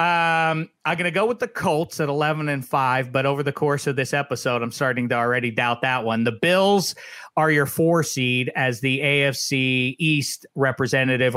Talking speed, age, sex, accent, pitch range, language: 195 wpm, 40-59, male, American, 135-195 Hz, English